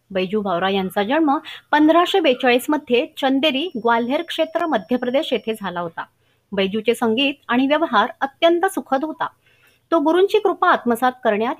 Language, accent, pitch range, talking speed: Marathi, native, 220-310 Hz, 95 wpm